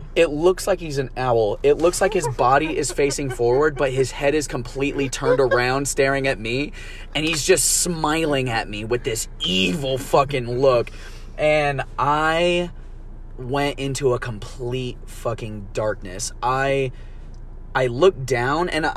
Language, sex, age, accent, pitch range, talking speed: English, male, 20-39, American, 115-145 Hz, 150 wpm